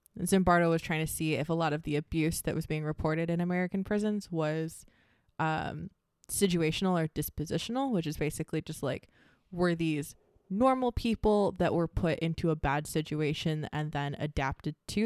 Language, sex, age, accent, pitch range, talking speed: English, female, 20-39, American, 155-190 Hz, 170 wpm